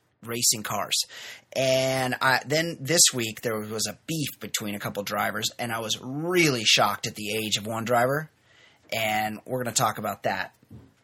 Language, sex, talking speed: English, male, 180 wpm